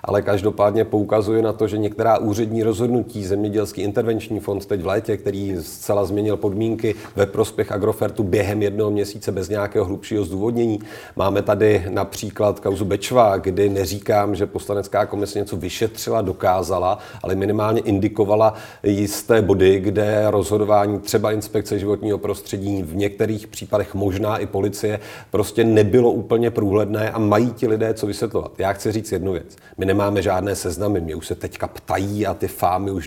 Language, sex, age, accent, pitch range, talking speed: Czech, male, 40-59, native, 100-110 Hz, 160 wpm